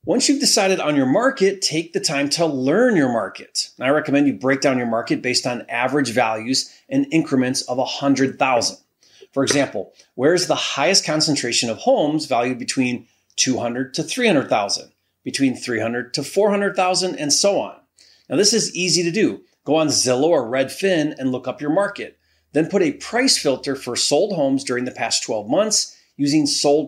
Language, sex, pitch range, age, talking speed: English, male, 130-195 Hz, 30-49, 190 wpm